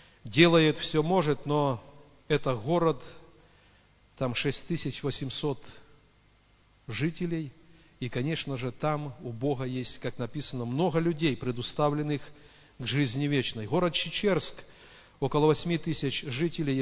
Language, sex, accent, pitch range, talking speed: Russian, male, native, 130-155 Hz, 105 wpm